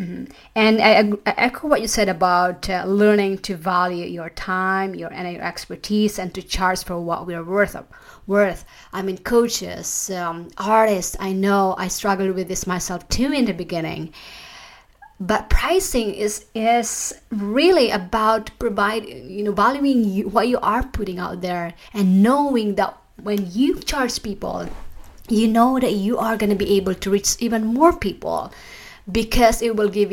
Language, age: English, 30-49